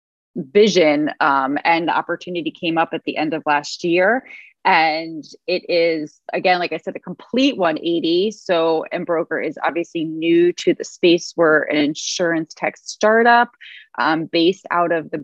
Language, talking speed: English, 160 wpm